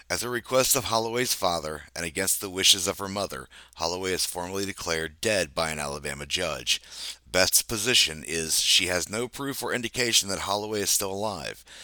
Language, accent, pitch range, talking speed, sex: English, American, 90-120 Hz, 180 wpm, male